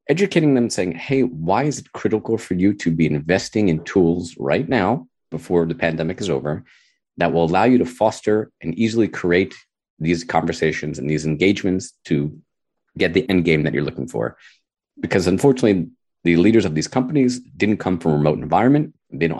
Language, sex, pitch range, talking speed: English, male, 80-115 Hz, 185 wpm